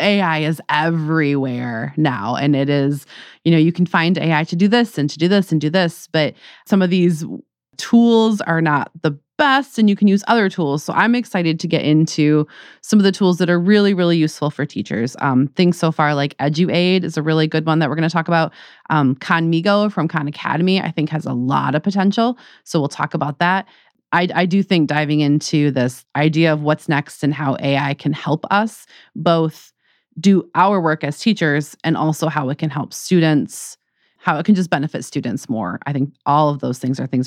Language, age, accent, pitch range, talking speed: English, 30-49, American, 150-180 Hz, 215 wpm